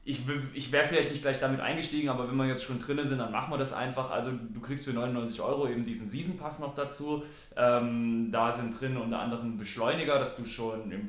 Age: 20-39